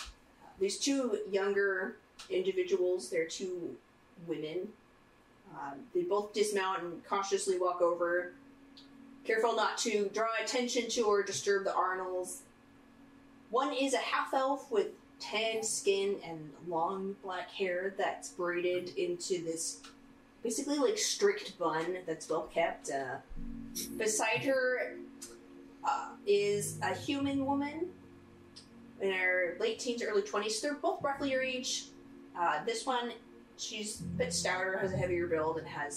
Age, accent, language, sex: 30-49, American, English, female